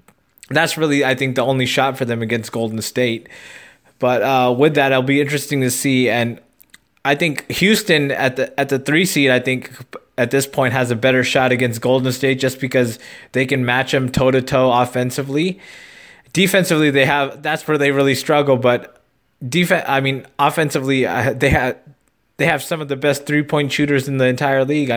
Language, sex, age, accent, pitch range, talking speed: English, male, 20-39, American, 130-150 Hz, 195 wpm